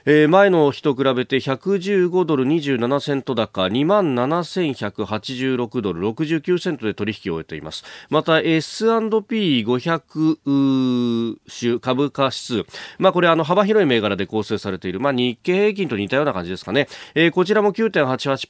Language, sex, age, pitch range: Japanese, male, 40-59, 115-170 Hz